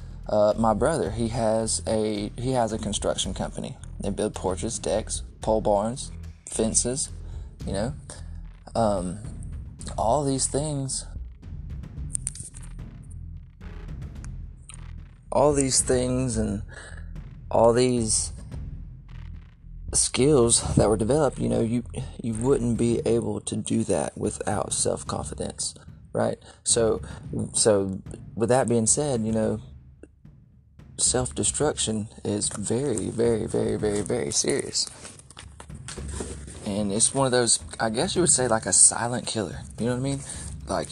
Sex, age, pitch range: male, 20-39, 85-115 Hz